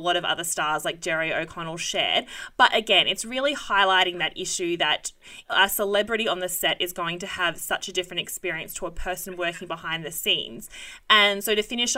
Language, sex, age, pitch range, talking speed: English, female, 20-39, 175-205 Hz, 200 wpm